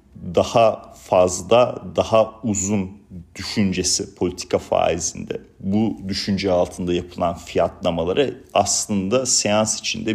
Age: 40-59